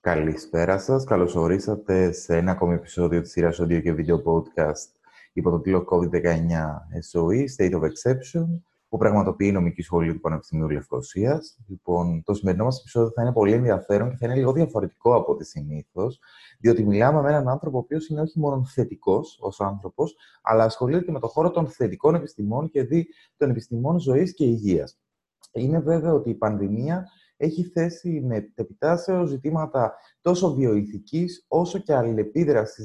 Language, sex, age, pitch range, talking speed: Greek, male, 30-49, 100-155 Hz, 165 wpm